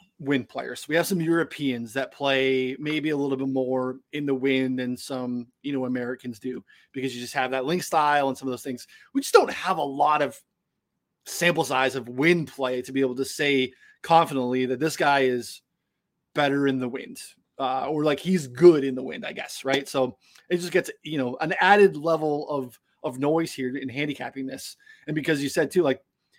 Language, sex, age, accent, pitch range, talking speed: English, male, 20-39, American, 130-155 Hz, 210 wpm